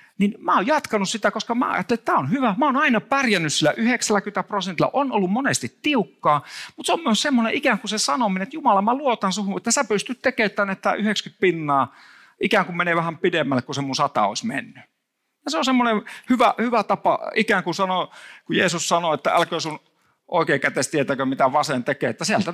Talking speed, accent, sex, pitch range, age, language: 200 wpm, native, male, 145-225 Hz, 50-69, Finnish